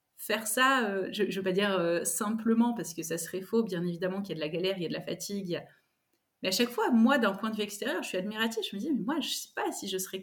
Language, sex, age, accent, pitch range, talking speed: French, female, 20-39, French, 185-230 Hz, 325 wpm